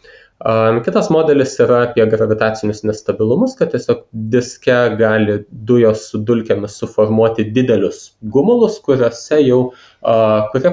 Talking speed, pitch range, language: 100 wpm, 110-135 Hz, English